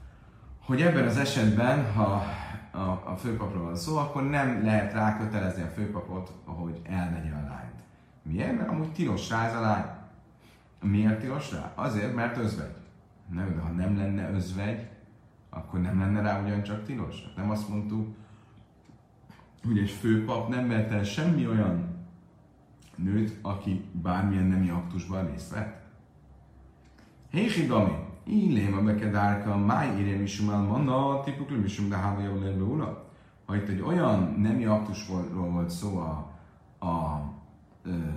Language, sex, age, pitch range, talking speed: Hungarian, male, 30-49, 90-110 Hz, 140 wpm